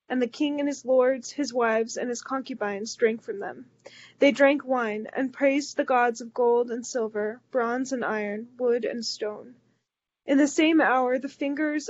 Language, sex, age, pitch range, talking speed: English, female, 20-39, 230-270 Hz, 185 wpm